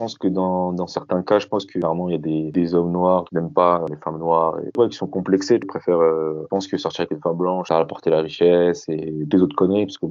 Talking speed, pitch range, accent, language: 305 wpm, 85-105 Hz, French, French